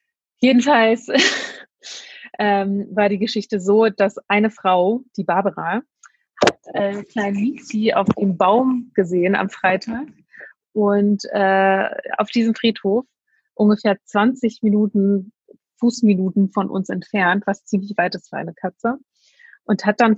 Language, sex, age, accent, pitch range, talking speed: German, female, 30-49, German, 195-225 Hz, 120 wpm